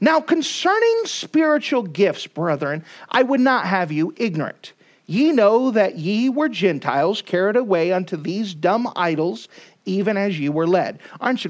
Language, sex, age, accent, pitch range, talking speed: English, male, 50-69, American, 180-255 Hz, 155 wpm